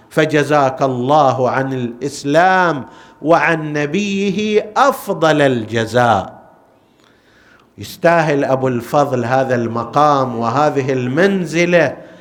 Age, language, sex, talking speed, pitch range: 50-69, Arabic, male, 75 wpm, 130-180 Hz